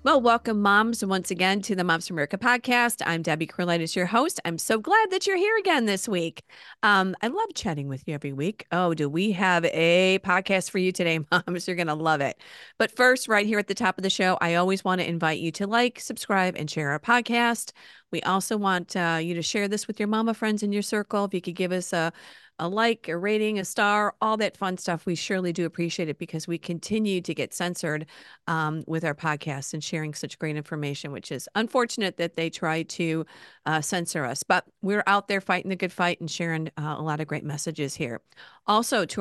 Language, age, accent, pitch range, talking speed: English, 40-59, American, 165-210 Hz, 230 wpm